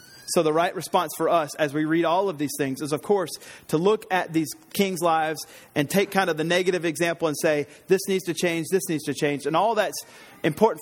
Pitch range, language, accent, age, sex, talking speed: 135-165 Hz, English, American, 30-49, male, 240 wpm